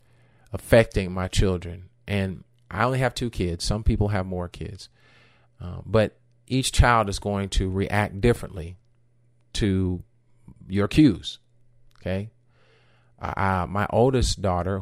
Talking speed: 120 wpm